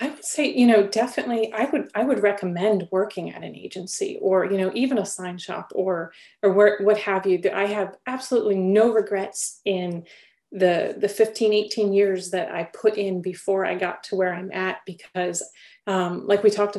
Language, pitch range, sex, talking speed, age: English, 185-220 Hz, female, 195 wpm, 30-49